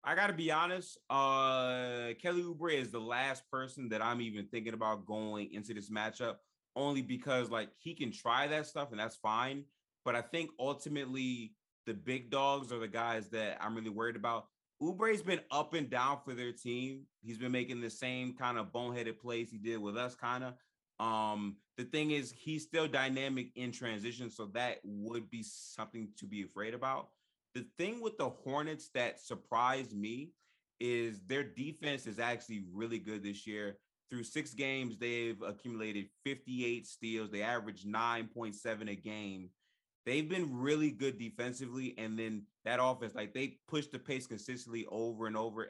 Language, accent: English, American